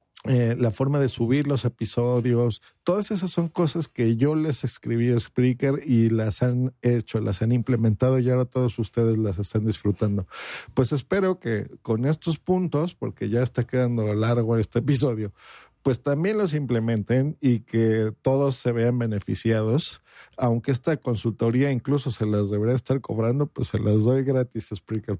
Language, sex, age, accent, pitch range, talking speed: Spanish, male, 50-69, Mexican, 115-145 Hz, 165 wpm